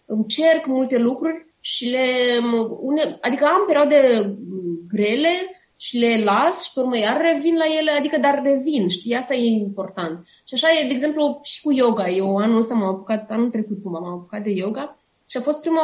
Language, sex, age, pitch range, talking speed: Romanian, female, 20-39, 215-290 Hz, 185 wpm